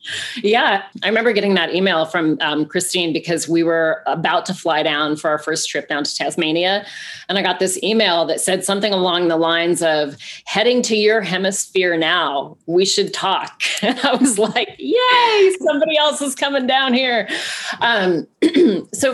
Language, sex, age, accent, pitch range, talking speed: English, female, 30-49, American, 160-205 Hz, 175 wpm